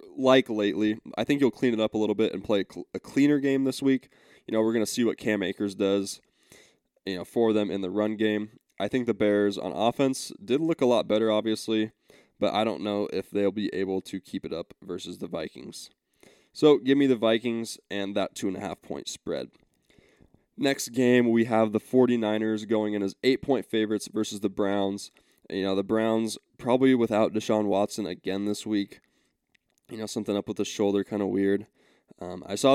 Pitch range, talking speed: 100-115 Hz, 210 wpm